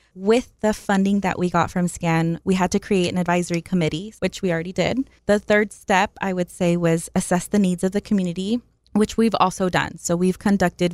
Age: 20-39